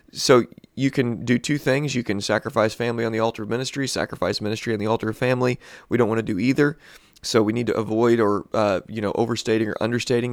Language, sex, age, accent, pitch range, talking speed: English, male, 30-49, American, 105-125 Hz, 230 wpm